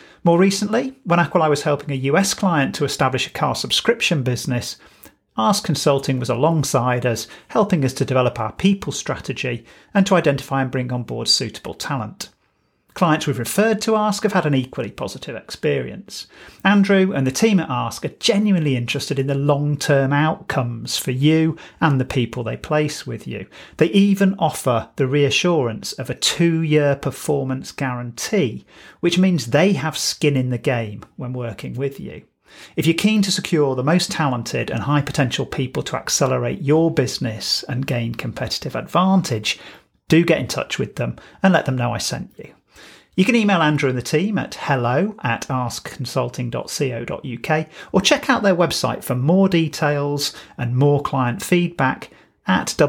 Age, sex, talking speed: 40-59, male, 170 wpm